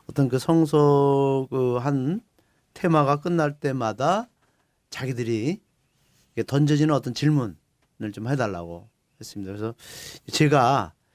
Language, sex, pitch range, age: Korean, male, 115-160 Hz, 40-59